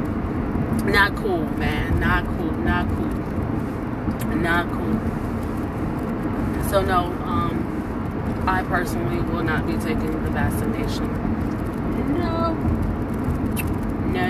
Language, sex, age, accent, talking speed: English, female, 20-39, American, 90 wpm